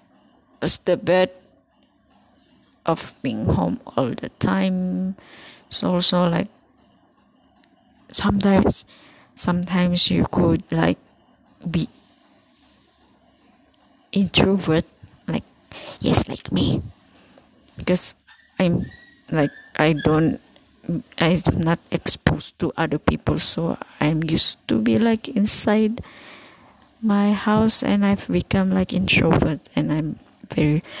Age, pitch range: 20-39, 165-215 Hz